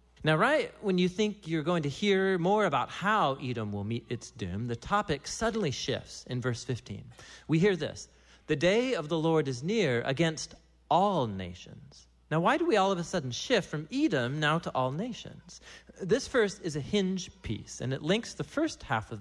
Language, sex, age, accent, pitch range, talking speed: English, male, 40-59, American, 120-180 Hz, 205 wpm